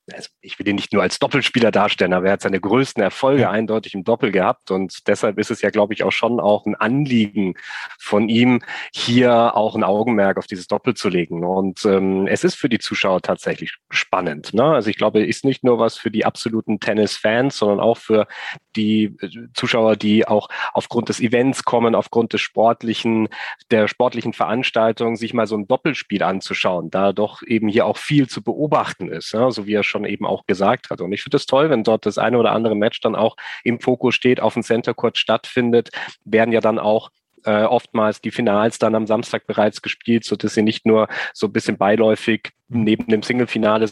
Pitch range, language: 105-120 Hz, German